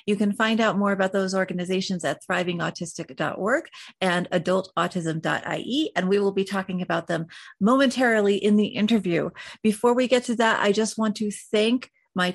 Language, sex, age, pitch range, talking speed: English, female, 30-49, 180-220 Hz, 165 wpm